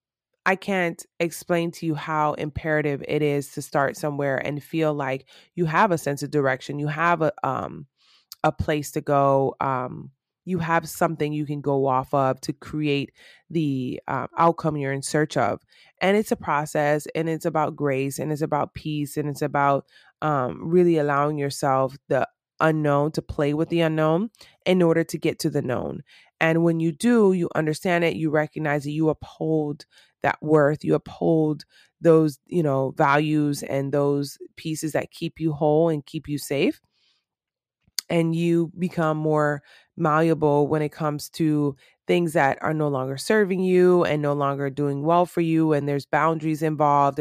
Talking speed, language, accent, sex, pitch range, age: 175 wpm, English, American, female, 140-165 Hz, 20-39